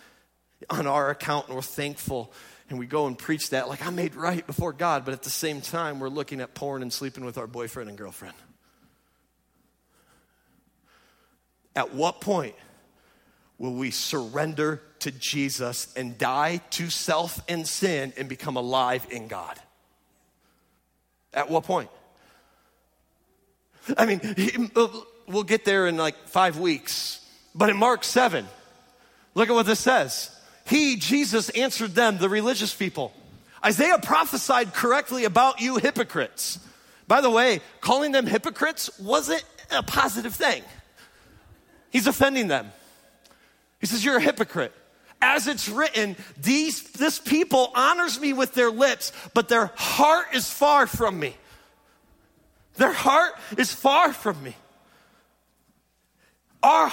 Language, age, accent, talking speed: English, 40-59, American, 135 wpm